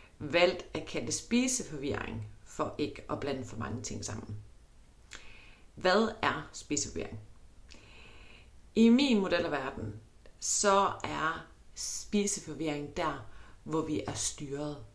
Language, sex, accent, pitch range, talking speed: Danish, female, native, 105-160 Hz, 110 wpm